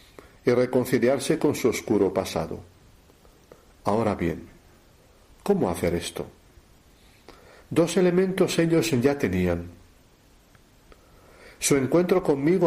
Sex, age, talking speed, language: male, 60-79, 90 wpm, Spanish